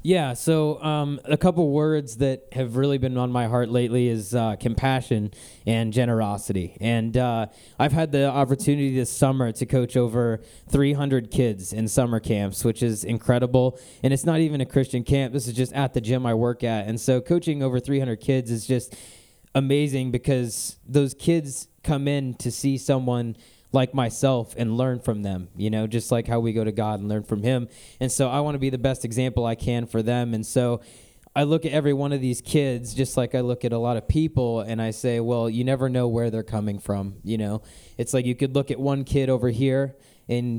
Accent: American